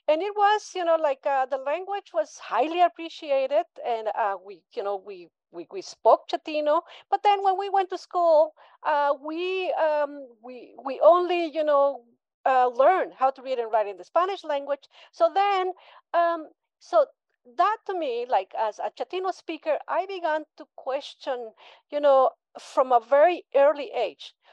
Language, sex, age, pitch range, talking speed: English, female, 40-59, 245-345 Hz, 175 wpm